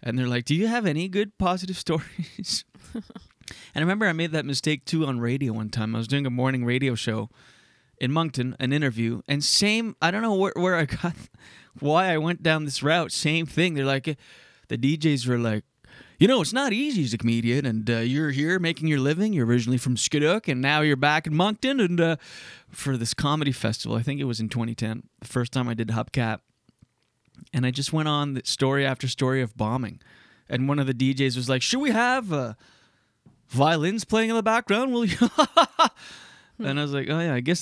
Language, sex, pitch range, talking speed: English, male, 120-160 Hz, 215 wpm